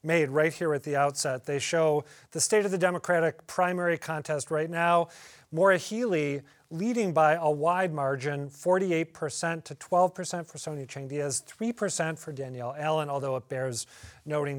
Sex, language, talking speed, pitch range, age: male, English, 155 wpm, 140-180 Hz, 40-59